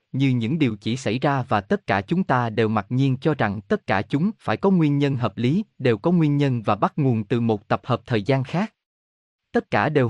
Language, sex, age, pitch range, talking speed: Vietnamese, male, 20-39, 110-155 Hz, 250 wpm